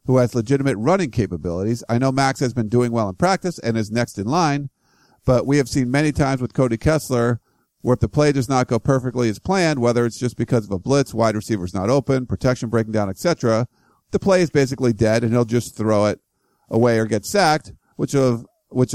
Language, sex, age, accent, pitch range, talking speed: English, male, 50-69, American, 110-135 Hz, 225 wpm